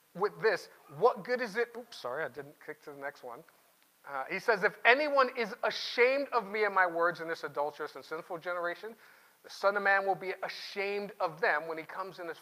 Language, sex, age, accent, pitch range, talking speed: English, male, 40-59, American, 170-240 Hz, 225 wpm